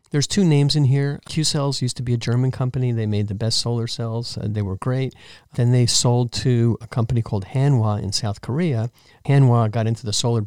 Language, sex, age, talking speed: English, male, 50-69, 225 wpm